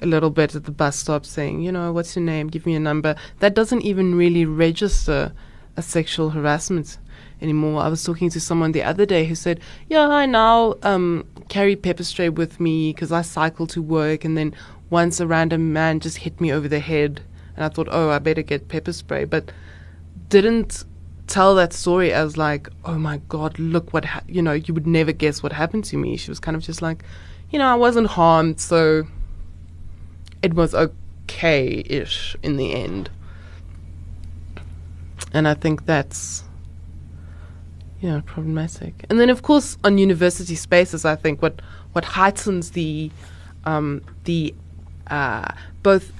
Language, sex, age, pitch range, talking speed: English, female, 20-39, 145-175 Hz, 175 wpm